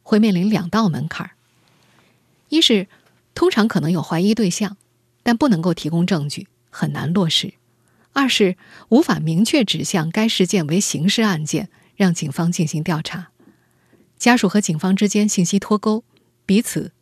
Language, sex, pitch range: Chinese, female, 160-210 Hz